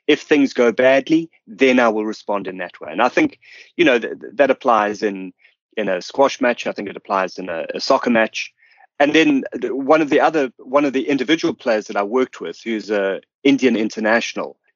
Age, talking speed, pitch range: 30-49, 210 wpm, 120-165 Hz